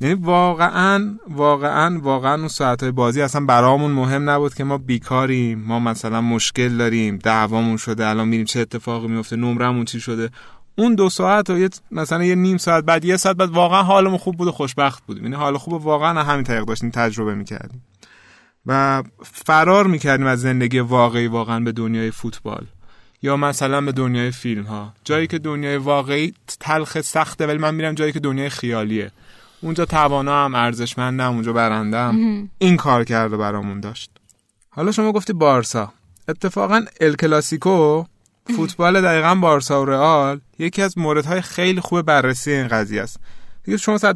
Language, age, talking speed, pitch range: Persian, 30-49, 160 wpm, 120-170 Hz